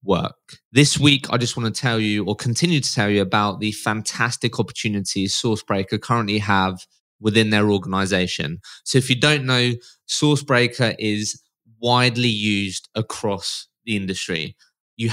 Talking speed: 145 wpm